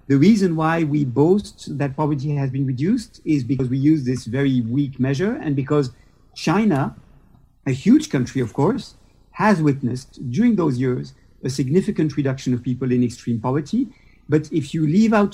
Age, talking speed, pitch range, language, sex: 50-69, 170 wpm, 125-165 Hz, Dutch, male